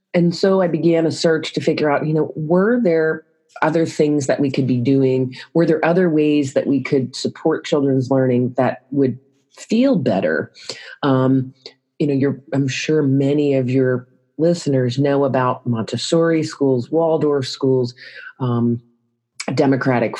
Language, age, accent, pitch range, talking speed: English, 40-59, American, 130-175 Hz, 155 wpm